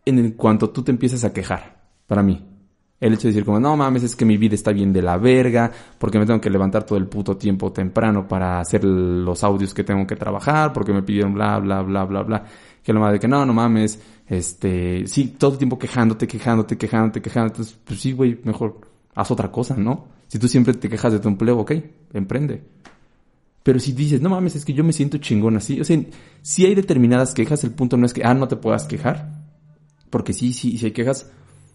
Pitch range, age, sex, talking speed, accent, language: 105-145 Hz, 20-39, male, 235 wpm, Mexican, Spanish